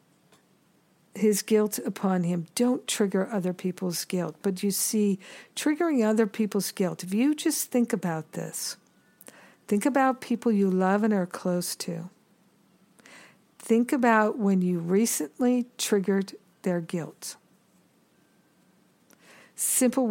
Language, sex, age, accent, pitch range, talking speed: English, female, 50-69, American, 180-220 Hz, 120 wpm